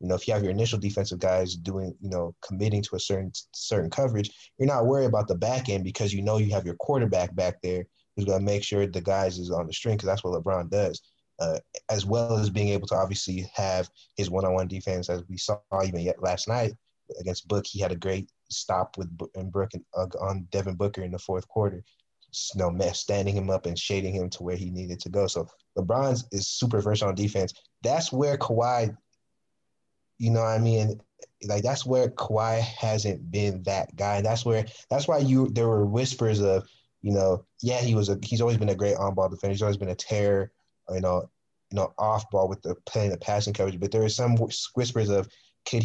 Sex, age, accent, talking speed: male, 20-39, American, 225 wpm